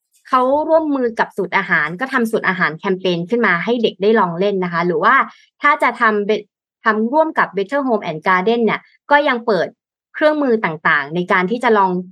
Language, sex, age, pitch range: Thai, female, 20-39, 185-245 Hz